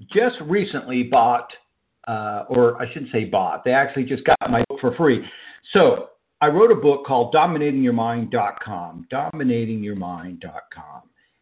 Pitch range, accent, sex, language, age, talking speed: 115-165 Hz, American, male, English, 50-69, 130 wpm